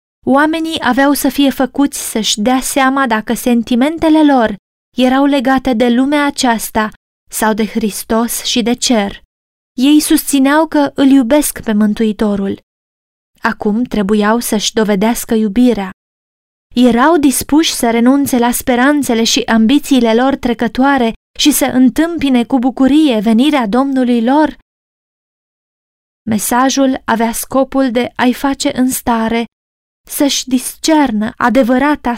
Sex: female